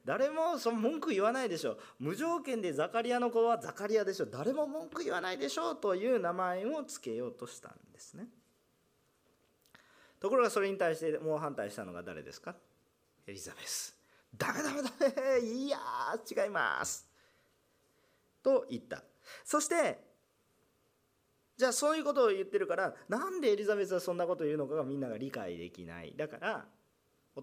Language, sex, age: Japanese, male, 40-59